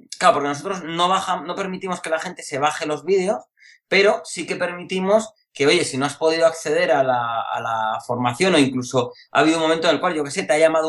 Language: English